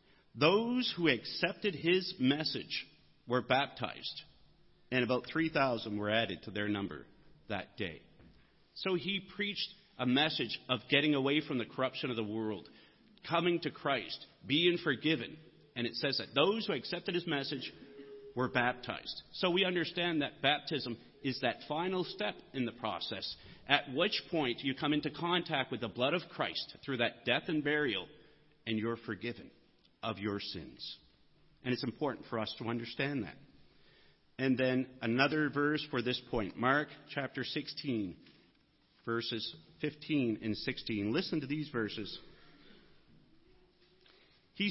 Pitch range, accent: 120-165 Hz, American